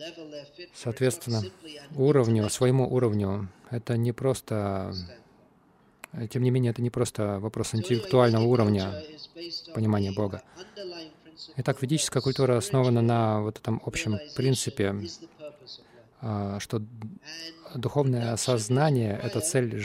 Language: Russian